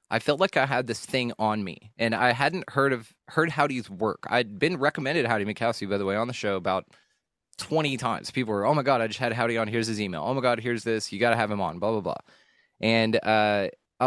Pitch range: 100-120 Hz